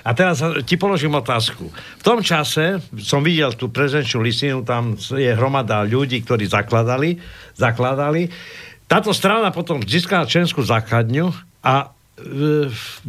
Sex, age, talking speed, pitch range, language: male, 60-79, 130 wpm, 125-165 Hz, Slovak